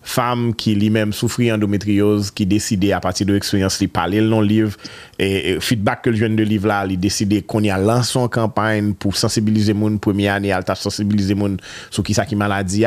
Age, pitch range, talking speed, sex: 30-49, 90-110 Hz, 215 wpm, male